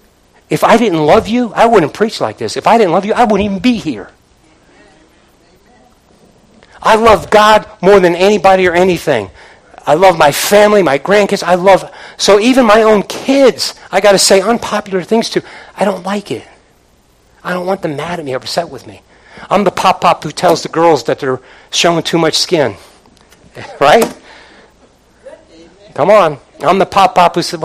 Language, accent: English, American